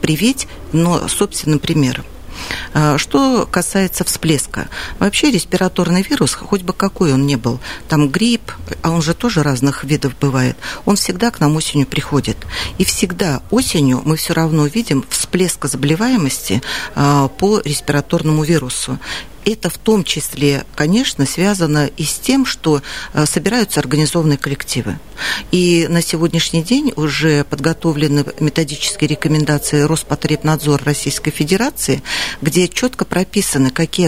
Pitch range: 145-185 Hz